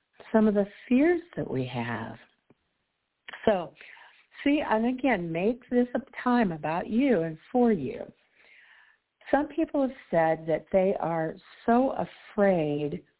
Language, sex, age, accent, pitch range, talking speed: English, female, 60-79, American, 170-220 Hz, 130 wpm